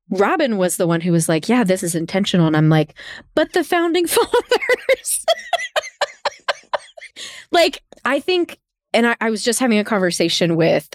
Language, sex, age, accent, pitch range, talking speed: English, female, 20-39, American, 165-210 Hz, 165 wpm